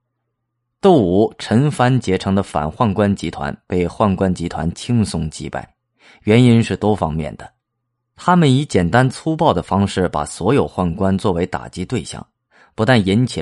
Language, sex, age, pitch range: Chinese, male, 30-49, 90-120 Hz